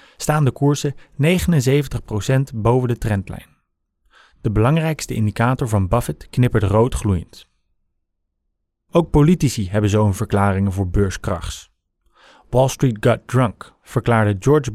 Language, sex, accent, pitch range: English, male, Dutch, 105-140 Hz